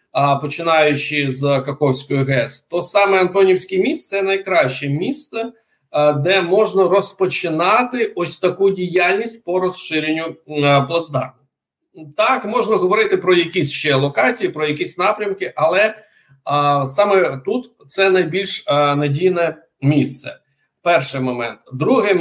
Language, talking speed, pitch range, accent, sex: Ukrainian, 110 wpm, 145-200 Hz, native, male